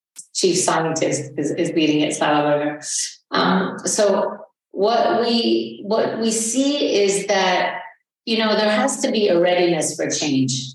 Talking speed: 135 wpm